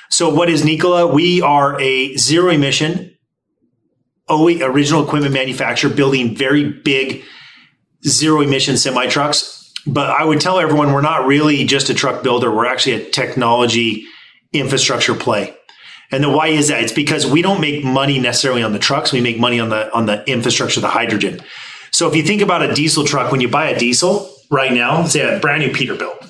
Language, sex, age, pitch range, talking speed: English, male, 30-49, 135-170 Hz, 180 wpm